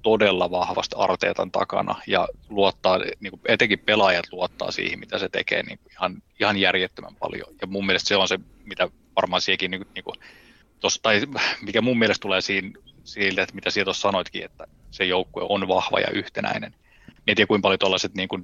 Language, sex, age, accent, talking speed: Finnish, male, 20-39, native, 175 wpm